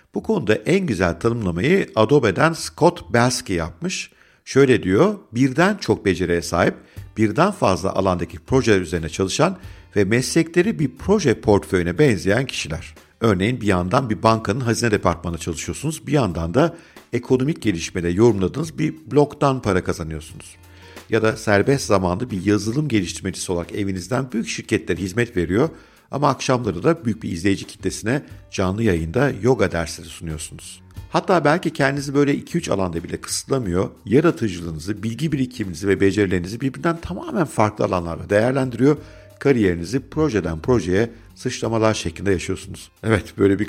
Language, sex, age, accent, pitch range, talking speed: Turkish, male, 50-69, native, 90-130 Hz, 135 wpm